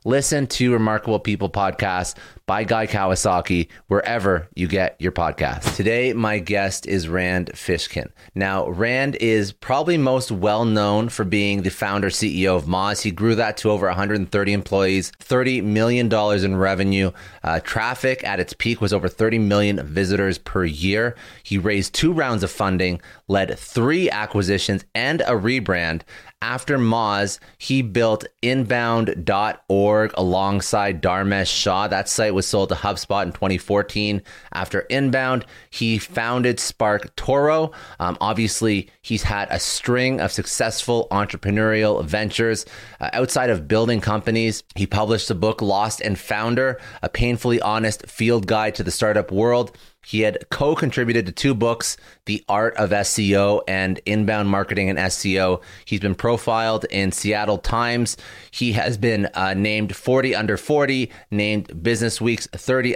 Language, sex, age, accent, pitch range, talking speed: English, male, 30-49, American, 95-115 Hz, 145 wpm